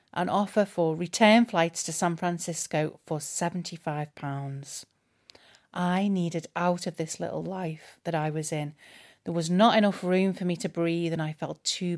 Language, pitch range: English, 155-180 Hz